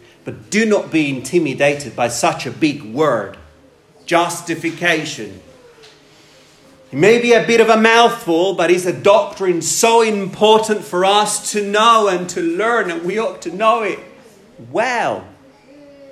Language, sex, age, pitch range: English, male, 40-59, 160-255 Hz